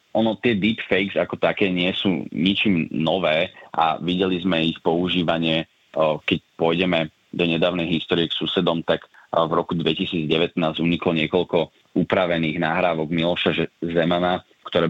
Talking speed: 130 wpm